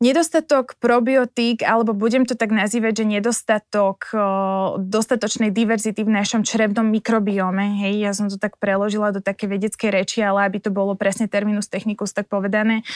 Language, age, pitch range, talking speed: Slovak, 20-39, 200-230 Hz, 155 wpm